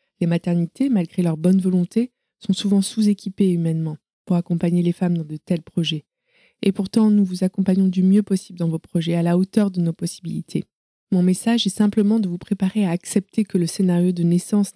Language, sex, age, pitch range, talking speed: French, female, 20-39, 170-195 Hz, 200 wpm